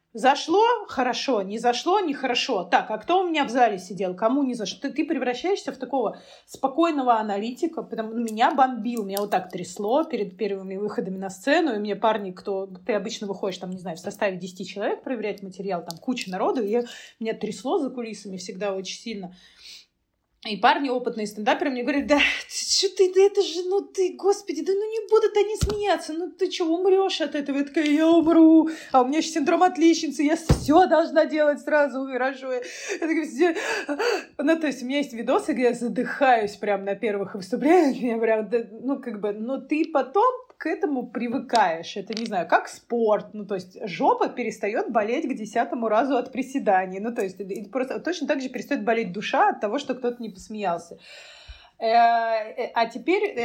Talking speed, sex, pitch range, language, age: 190 wpm, female, 210-315 Hz, Russian, 20-39